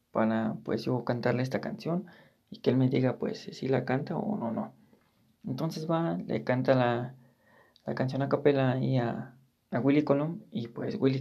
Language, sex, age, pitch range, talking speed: Spanish, male, 30-49, 130-150 Hz, 180 wpm